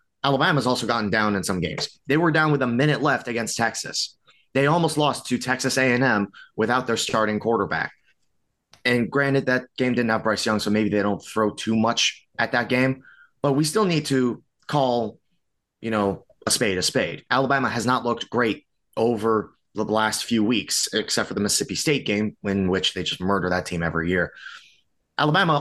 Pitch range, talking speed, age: 105-130 Hz, 190 wpm, 30-49